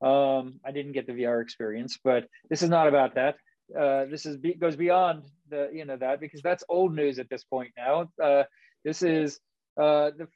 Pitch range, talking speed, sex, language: 135-165 Hz, 205 wpm, male, English